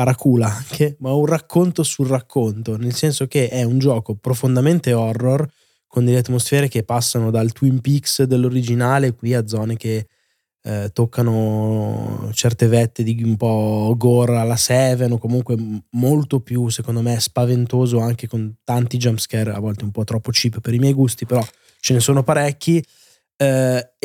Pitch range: 115-140 Hz